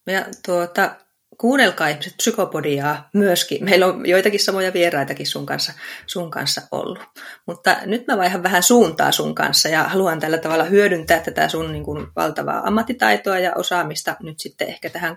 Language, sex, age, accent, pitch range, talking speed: Finnish, female, 20-39, native, 160-195 Hz, 160 wpm